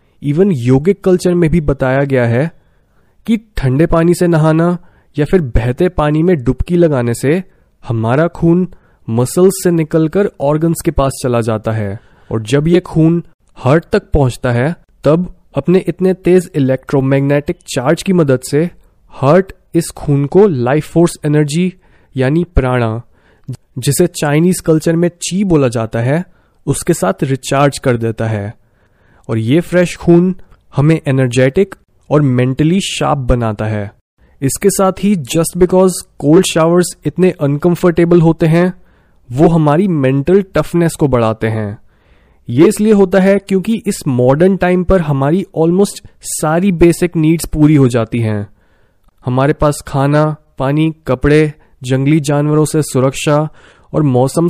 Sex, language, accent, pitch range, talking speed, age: male, Hindi, native, 130-175 Hz, 145 wpm, 30-49